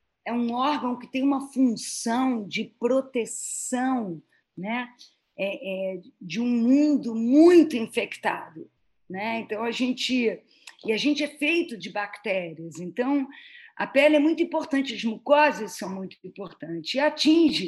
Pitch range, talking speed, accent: 215-295 Hz, 135 wpm, Brazilian